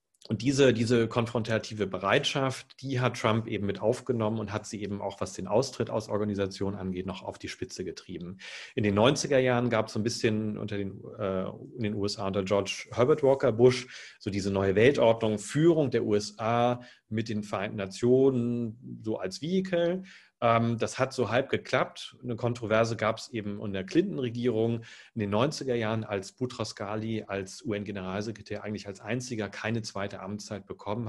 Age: 40-59